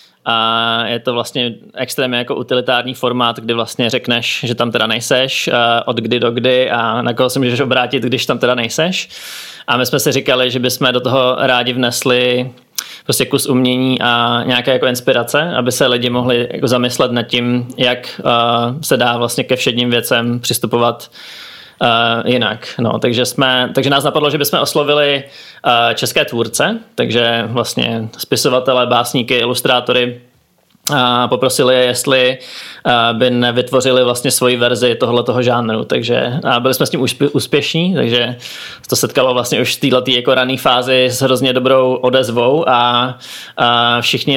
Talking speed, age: 145 wpm, 20-39